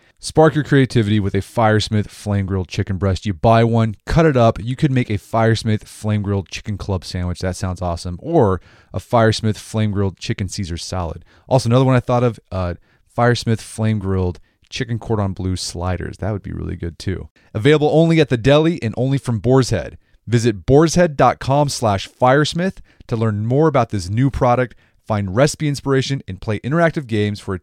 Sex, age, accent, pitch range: male, 30-49, American, 95-125 Hz